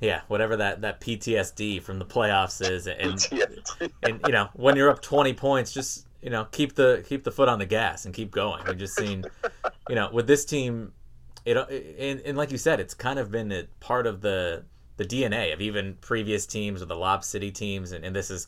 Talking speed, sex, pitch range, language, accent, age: 225 wpm, male, 95-115 Hz, English, American, 20-39